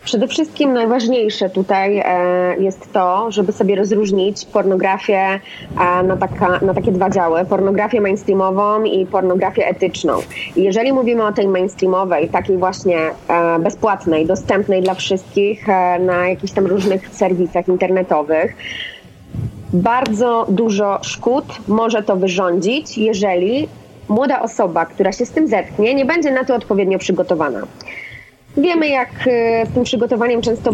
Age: 20-39